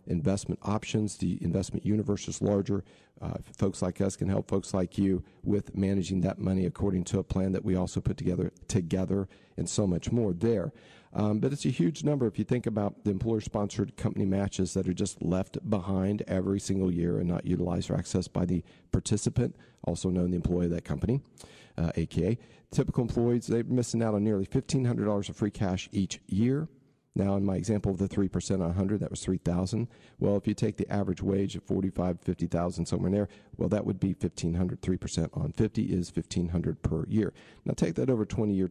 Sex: male